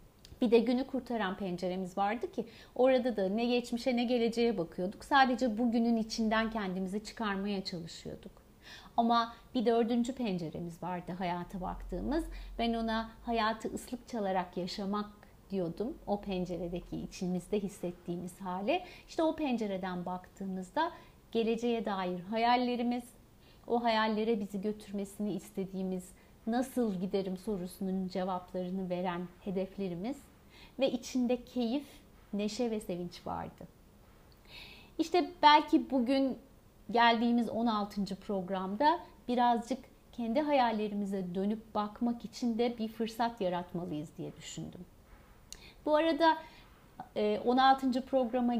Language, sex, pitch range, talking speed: Turkish, female, 190-250 Hz, 105 wpm